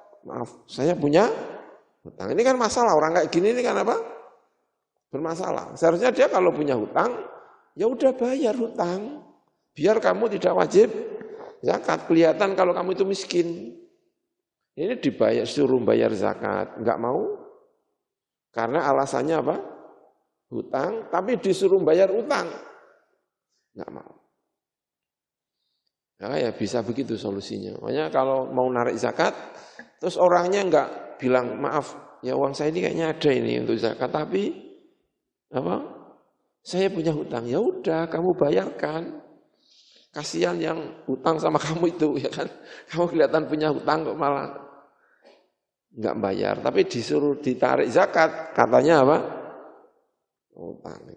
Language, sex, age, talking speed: Indonesian, male, 50-69, 125 wpm